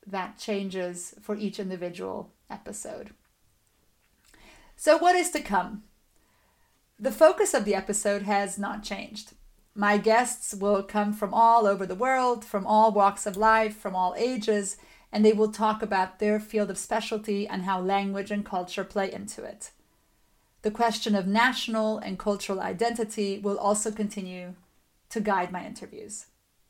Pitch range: 200-225 Hz